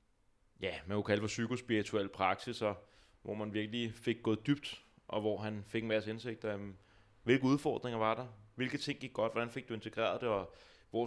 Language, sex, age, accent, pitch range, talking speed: Danish, male, 20-39, native, 105-120 Hz, 200 wpm